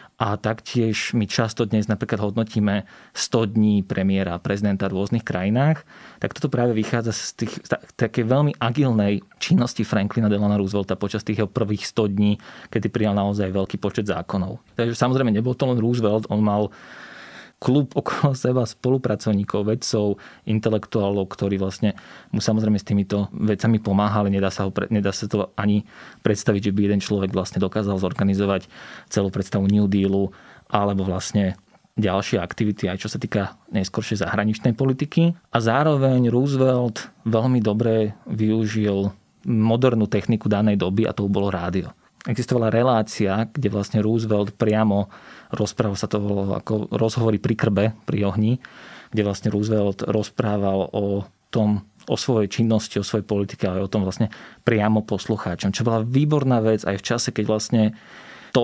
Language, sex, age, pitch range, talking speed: Slovak, male, 20-39, 100-115 Hz, 155 wpm